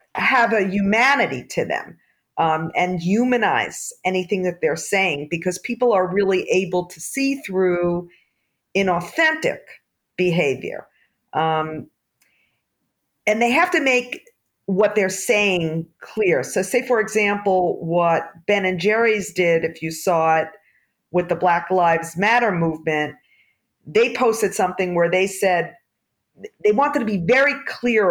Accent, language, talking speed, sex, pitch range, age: American, English, 135 wpm, female, 175-230 Hz, 50-69